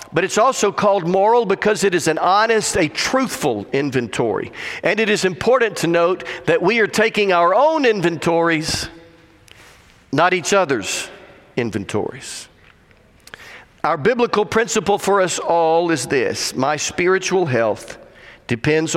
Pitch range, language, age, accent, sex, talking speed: 140-195 Hz, English, 50-69, American, male, 135 wpm